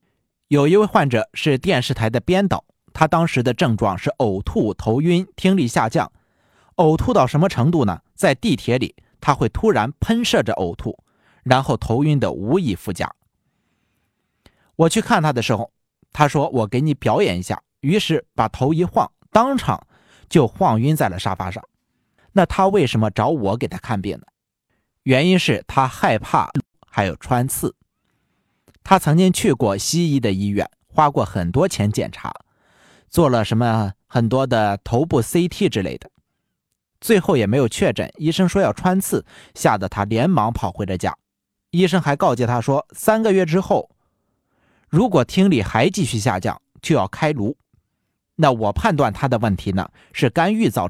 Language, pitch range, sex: Chinese, 115-180 Hz, male